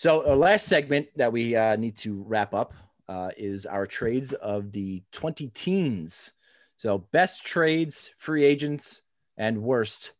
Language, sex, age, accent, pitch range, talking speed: English, male, 30-49, American, 105-130 Hz, 155 wpm